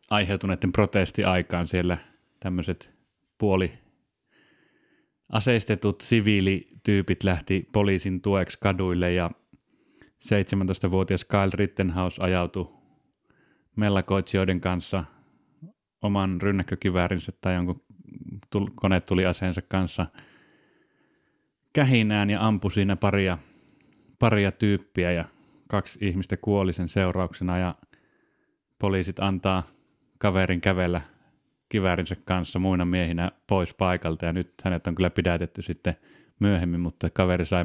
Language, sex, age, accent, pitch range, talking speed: Finnish, male, 30-49, native, 90-100 Hz, 100 wpm